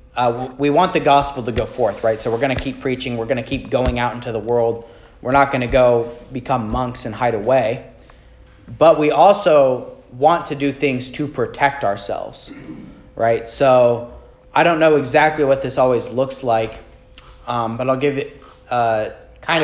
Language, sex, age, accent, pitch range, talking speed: English, male, 30-49, American, 120-140 Hz, 190 wpm